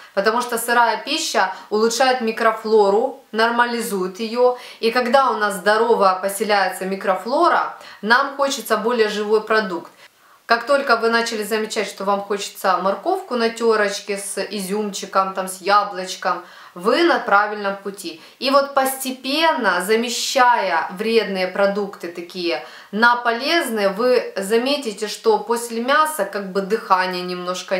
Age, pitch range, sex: 20-39, 190-235 Hz, female